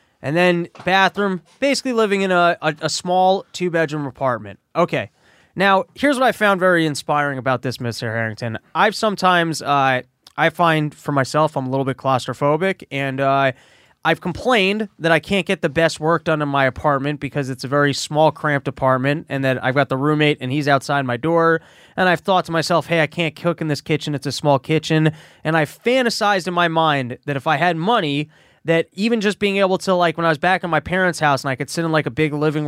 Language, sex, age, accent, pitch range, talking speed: English, male, 20-39, American, 140-175 Hz, 220 wpm